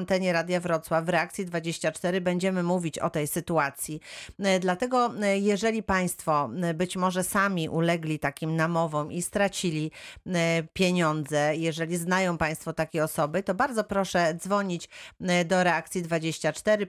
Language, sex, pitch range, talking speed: Polish, female, 165-185 Hz, 125 wpm